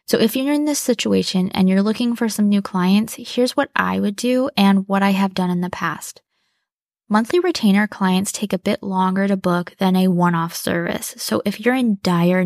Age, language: 20-39, English